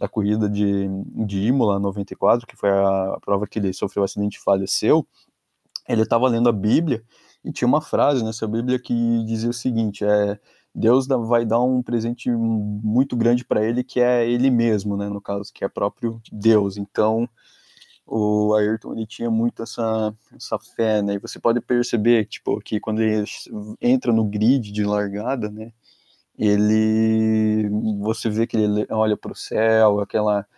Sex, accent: male, Brazilian